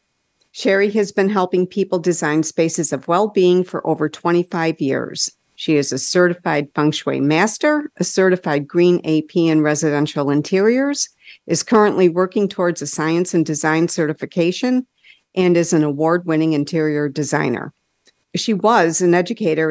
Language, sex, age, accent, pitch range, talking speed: English, female, 50-69, American, 155-190 Hz, 140 wpm